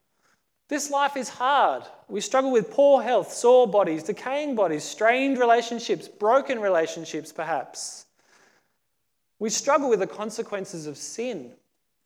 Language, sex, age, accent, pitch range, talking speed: English, male, 30-49, Australian, 190-250 Hz, 125 wpm